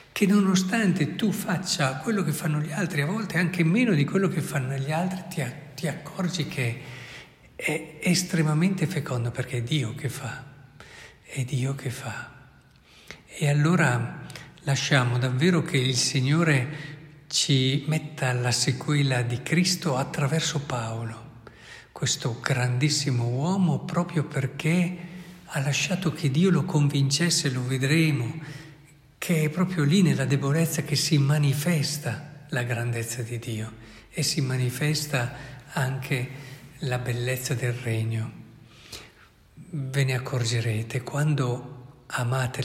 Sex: male